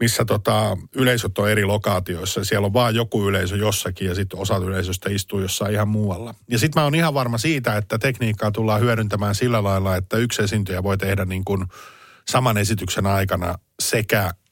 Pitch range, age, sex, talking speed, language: 95-110 Hz, 50-69, male, 180 wpm, Finnish